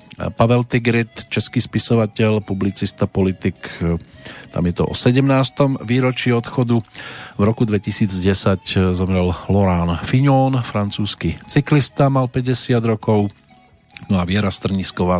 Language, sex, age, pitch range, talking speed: Slovak, male, 40-59, 90-120 Hz, 110 wpm